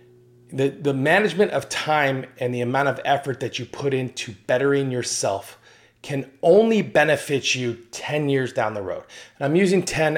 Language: English